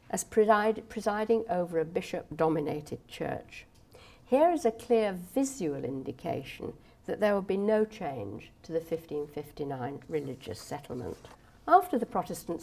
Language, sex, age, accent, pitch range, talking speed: English, female, 60-79, British, 145-220 Hz, 125 wpm